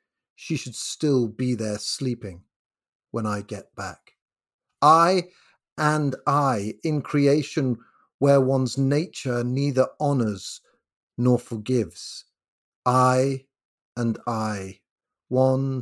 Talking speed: 100 wpm